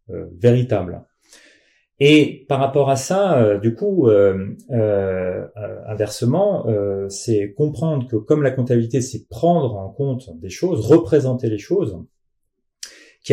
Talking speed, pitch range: 135 wpm, 105-150 Hz